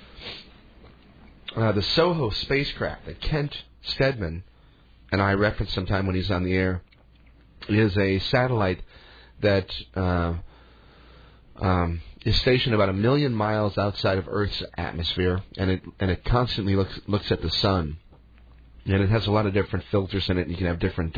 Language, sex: English, male